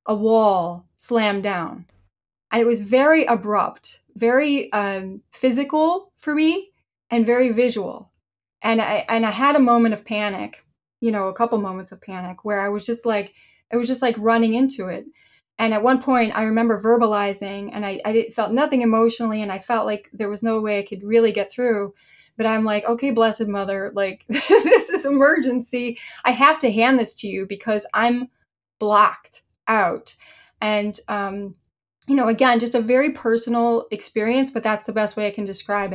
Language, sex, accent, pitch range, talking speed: English, female, American, 210-255 Hz, 185 wpm